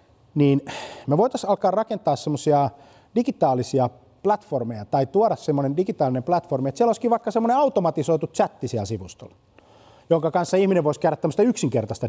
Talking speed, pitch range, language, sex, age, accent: 135 wpm, 120-190 Hz, Finnish, male, 30-49, native